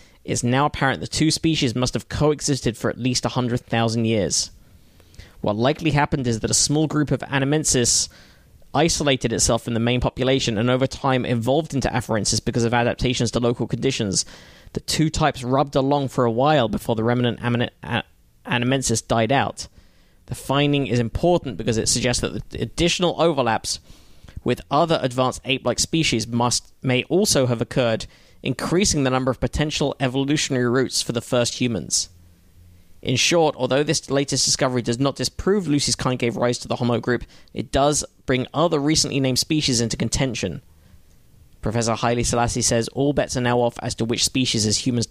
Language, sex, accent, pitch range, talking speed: English, male, British, 115-135 Hz, 175 wpm